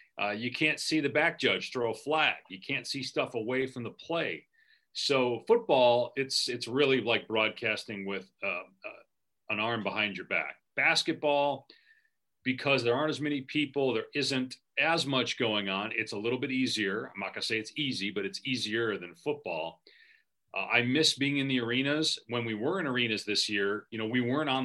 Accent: American